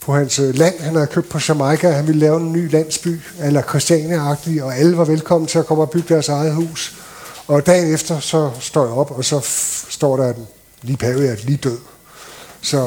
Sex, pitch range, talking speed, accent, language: male, 145-170 Hz, 215 wpm, native, Danish